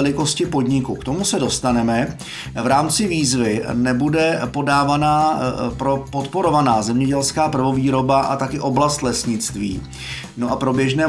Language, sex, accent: Czech, male, native